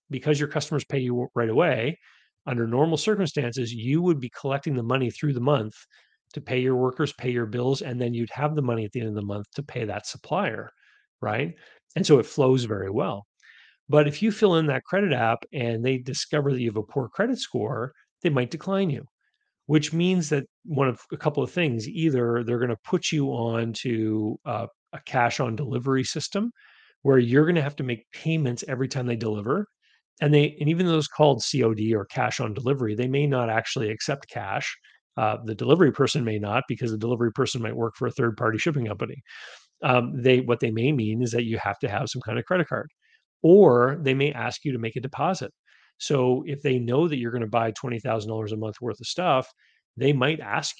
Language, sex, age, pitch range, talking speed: English, male, 40-59, 115-150 Hz, 220 wpm